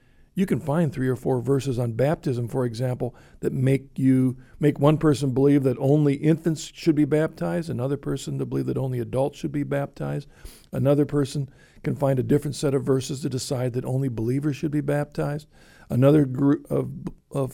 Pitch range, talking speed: 130-155 Hz, 190 wpm